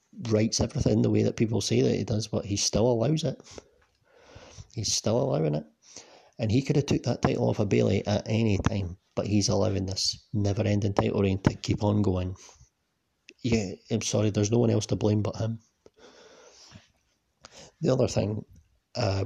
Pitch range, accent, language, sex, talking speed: 100-120 Hz, British, English, male, 185 wpm